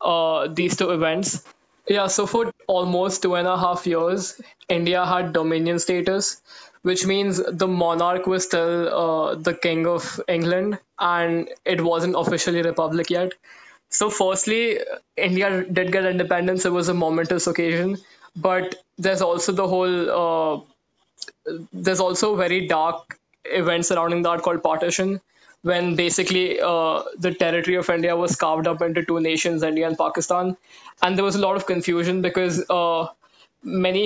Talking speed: 150 wpm